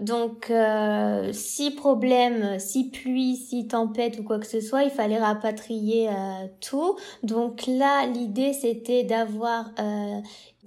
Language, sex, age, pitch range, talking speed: French, female, 20-39, 215-245 Hz, 135 wpm